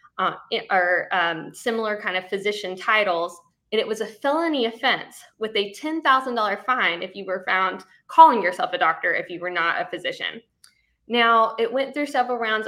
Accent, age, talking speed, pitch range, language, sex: American, 10-29, 190 wpm, 190-240 Hz, English, female